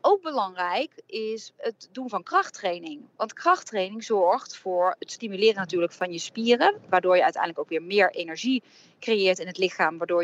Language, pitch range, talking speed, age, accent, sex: Dutch, 185-255 Hz, 170 wpm, 30-49, Dutch, female